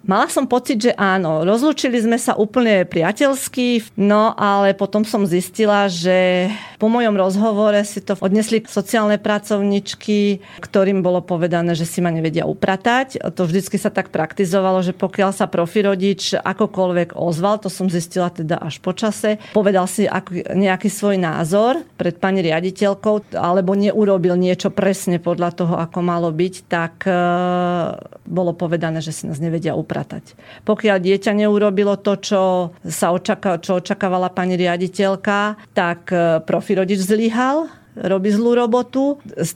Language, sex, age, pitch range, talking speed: Slovak, female, 40-59, 180-210 Hz, 140 wpm